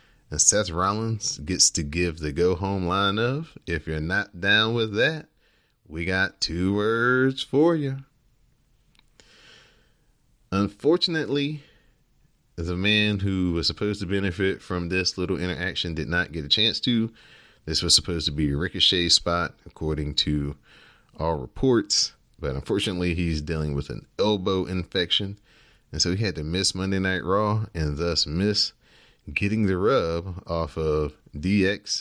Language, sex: English, male